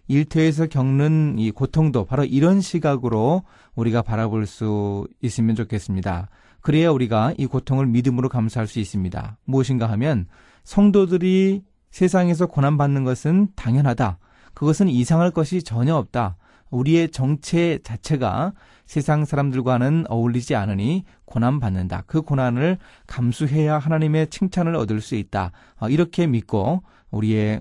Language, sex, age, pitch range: Korean, male, 30-49, 110-160 Hz